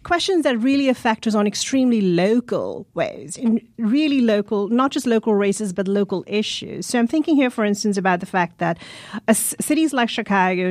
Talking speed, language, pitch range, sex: 185 wpm, English, 180-250 Hz, female